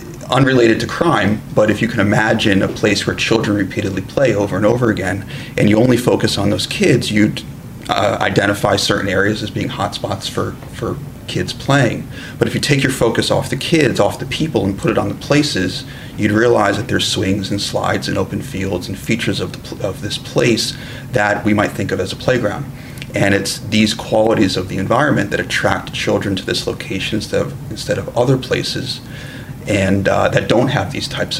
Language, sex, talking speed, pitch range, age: English, male, 200 wpm, 100-125 Hz, 30-49